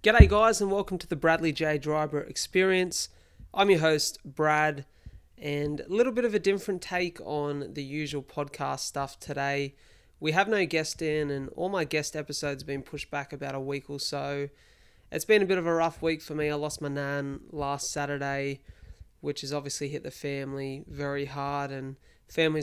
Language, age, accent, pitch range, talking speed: English, 20-39, Australian, 140-155 Hz, 195 wpm